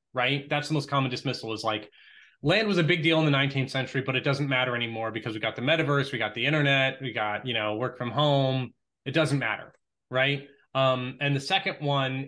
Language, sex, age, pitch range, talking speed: English, male, 20-39, 125-150 Hz, 230 wpm